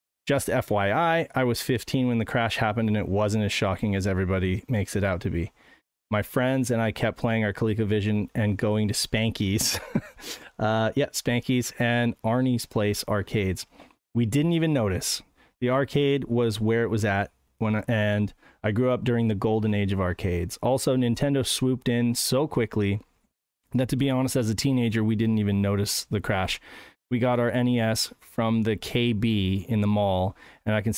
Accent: American